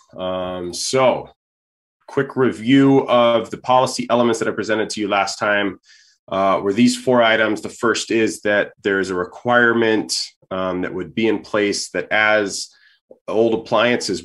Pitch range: 100-130 Hz